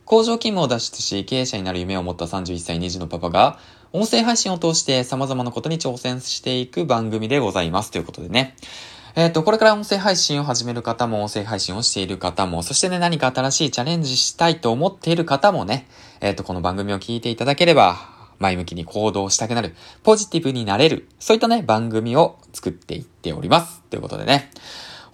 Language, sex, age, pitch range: Japanese, male, 20-39, 100-145 Hz